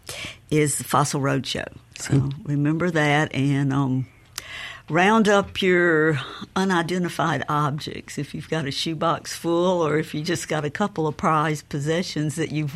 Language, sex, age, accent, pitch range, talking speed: English, female, 60-79, American, 135-165 Hz, 150 wpm